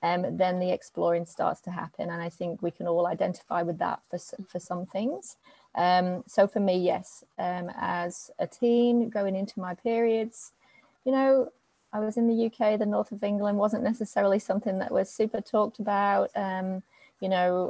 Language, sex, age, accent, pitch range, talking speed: English, female, 30-49, British, 180-220 Hz, 185 wpm